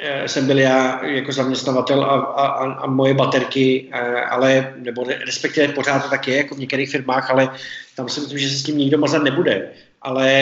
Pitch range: 130-155 Hz